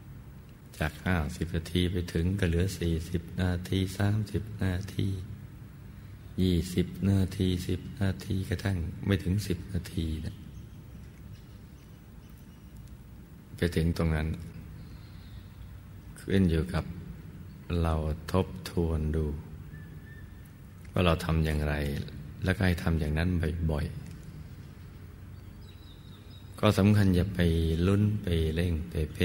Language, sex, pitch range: Thai, male, 80-95 Hz